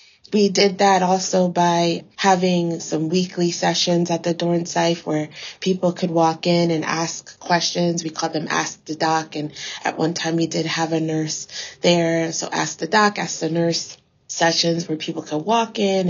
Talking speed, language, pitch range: 185 wpm, English, 160-180 Hz